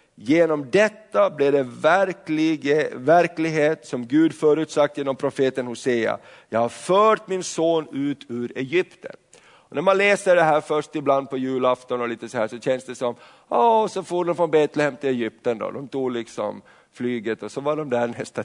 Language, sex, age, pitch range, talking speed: Swedish, male, 50-69, 130-175 Hz, 185 wpm